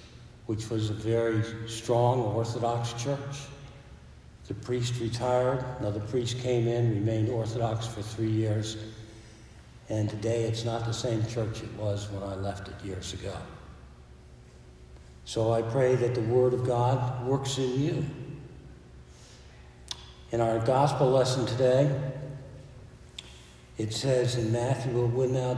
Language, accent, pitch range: English, American, 110-125 Hz